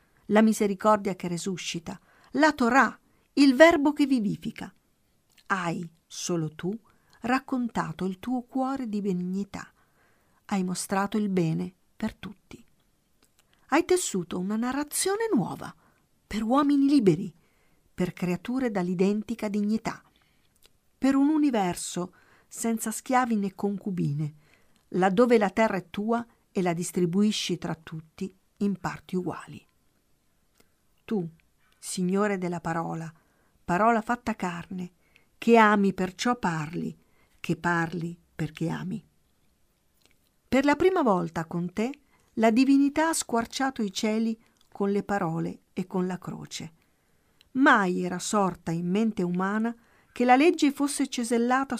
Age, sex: 50-69, female